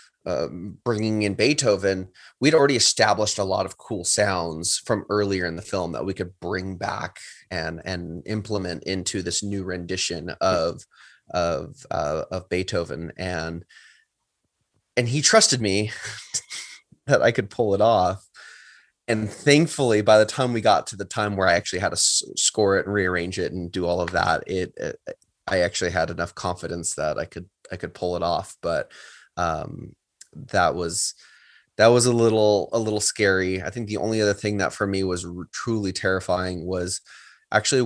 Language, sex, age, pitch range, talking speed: English, male, 20-39, 90-115 Hz, 175 wpm